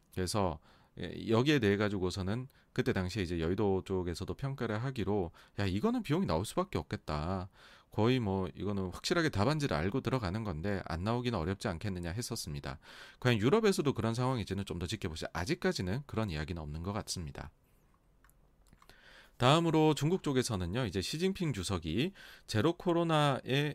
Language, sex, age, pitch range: Korean, male, 30-49, 95-130 Hz